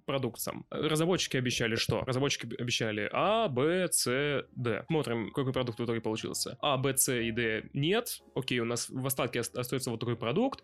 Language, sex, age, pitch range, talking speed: Russian, male, 20-39, 120-150 Hz, 175 wpm